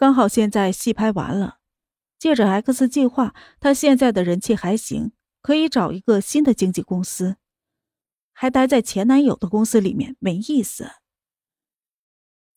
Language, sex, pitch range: Chinese, female, 210-260 Hz